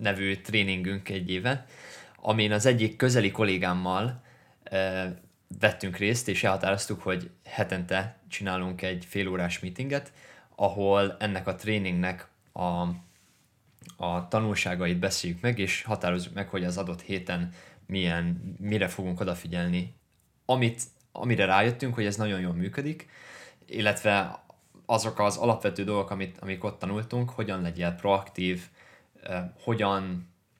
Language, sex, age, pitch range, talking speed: Hungarian, male, 20-39, 90-105 Hz, 120 wpm